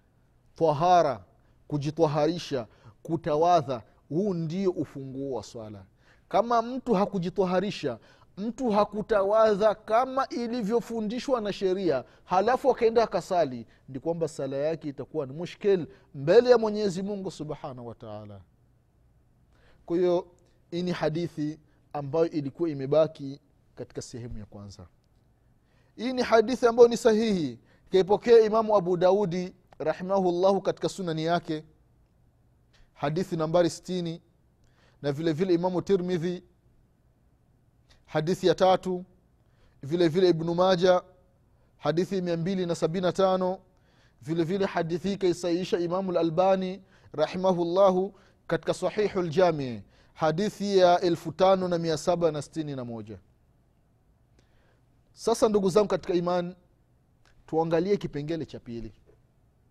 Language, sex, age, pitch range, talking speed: Swahili, male, 30-49, 145-190 Hz, 100 wpm